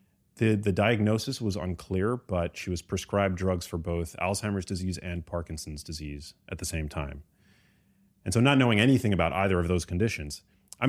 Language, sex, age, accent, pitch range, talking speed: English, male, 30-49, American, 85-100 Hz, 170 wpm